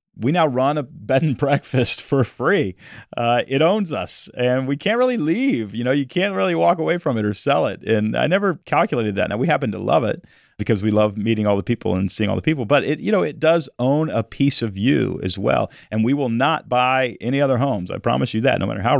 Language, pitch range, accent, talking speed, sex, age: English, 95-130 Hz, American, 255 wpm, male, 40-59